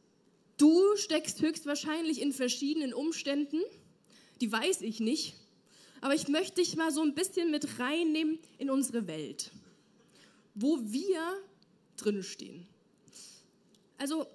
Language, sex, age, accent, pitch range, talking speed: German, female, 20-39, German, 220-315 Hz, 115 wpm